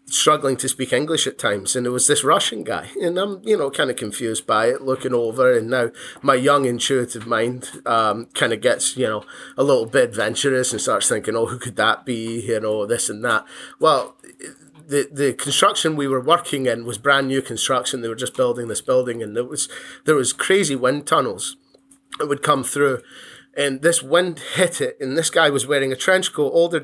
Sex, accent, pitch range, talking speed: male, British, 125-150 Hz, 215 wpm